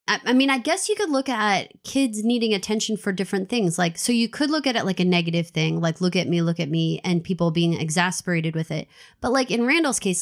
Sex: female